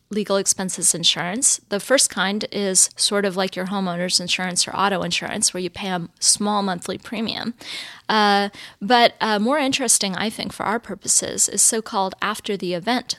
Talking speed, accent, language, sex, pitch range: 165 wpm, American, English, female, 185-220 Hz